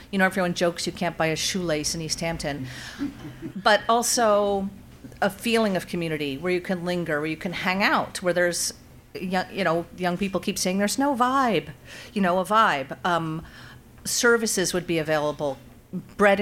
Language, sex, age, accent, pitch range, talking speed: English, female, 50-69, American, 160-200 Hz, 175 wpm